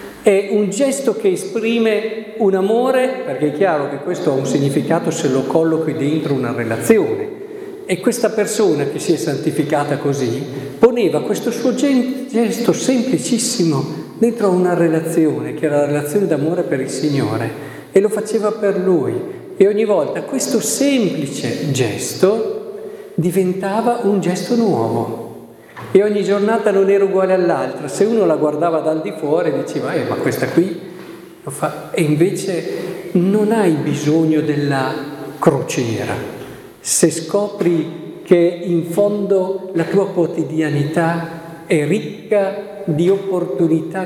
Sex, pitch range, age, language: male, 145-205 Hz, 50-69, Italian